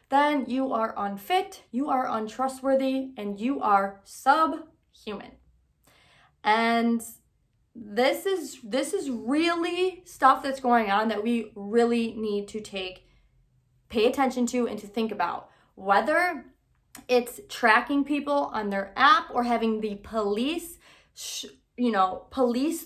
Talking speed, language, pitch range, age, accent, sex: 130 wpm, English, 210-265 Hz, 20-39, American, female